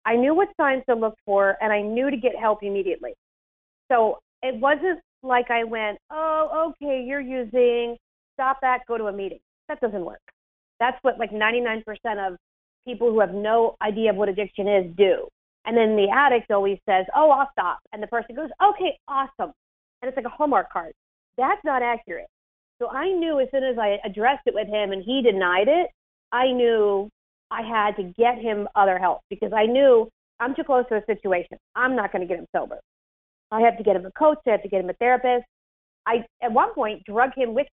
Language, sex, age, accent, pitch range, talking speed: English, female, 40-59, American, 210-265 Hz, 210 wpm